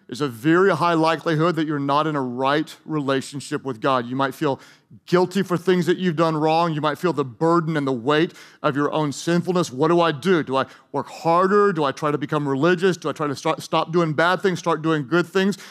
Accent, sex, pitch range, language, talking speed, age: American, male, 150-185 Hz, English, 235 wpm, 40-59